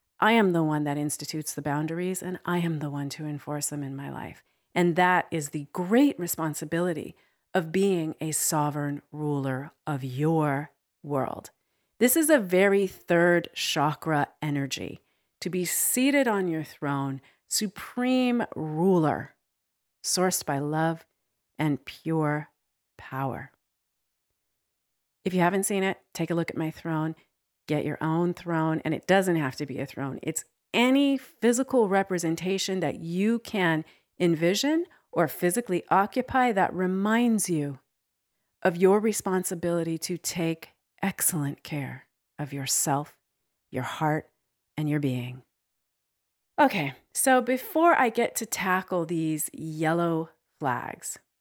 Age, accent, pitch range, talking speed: 40-59, American, 145-185 Hz, 135 wpm